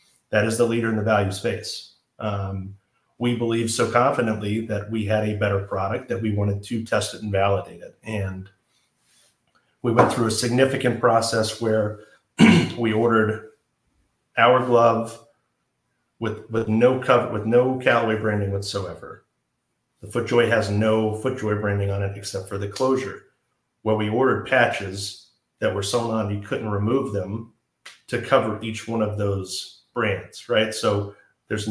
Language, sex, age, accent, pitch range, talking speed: English, male, 40-59, American, 105-115 Hz, 160 wpm